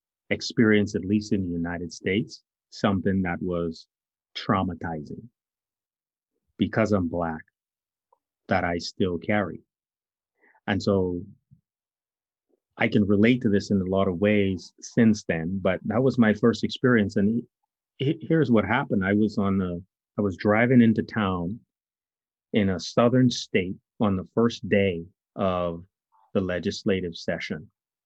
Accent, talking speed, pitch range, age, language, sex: American, 135 wpm, 90-110 Hz, 30-49, English, male